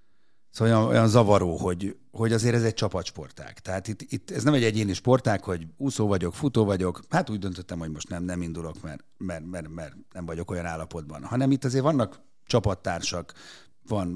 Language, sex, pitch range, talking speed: Hungarian, male, 95-120 Hz, 185 wpm